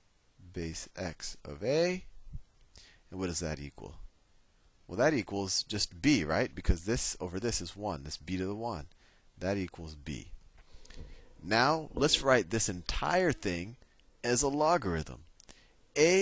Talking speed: 145 wpm